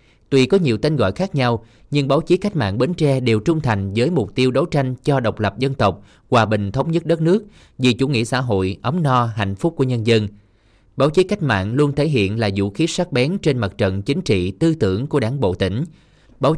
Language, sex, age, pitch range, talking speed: Vietnamese, male, 20-39, 105-145 Hz, 250 wpm